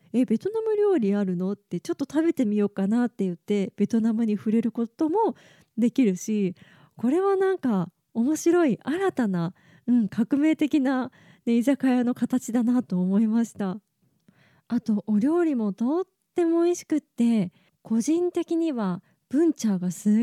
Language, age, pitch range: Japanese, 20-39, 195-265 Hz